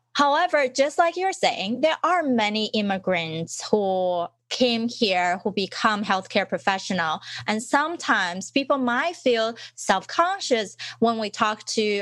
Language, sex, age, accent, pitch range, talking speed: English, female, 20-39, American, 195-270 Hz, 130 wpm